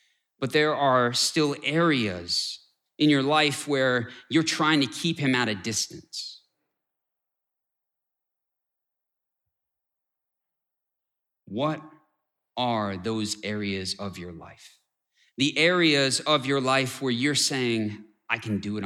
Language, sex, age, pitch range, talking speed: English, male, 30-49, 105-140 Hz, 115 wpm